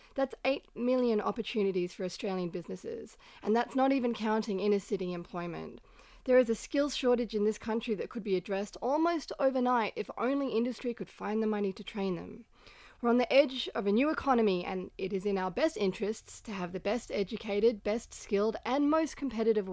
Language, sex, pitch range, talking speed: English, female, 195-245 Hz, 190 wpm